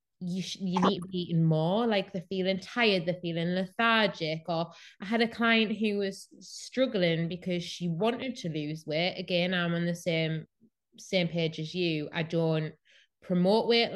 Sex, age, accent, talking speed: female, 20-39, British, 180 wpm